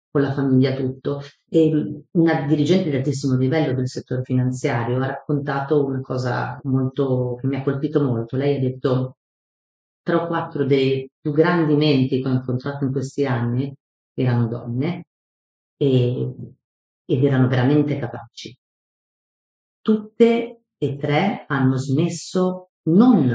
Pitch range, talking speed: 130-155 Hz, 135 wpm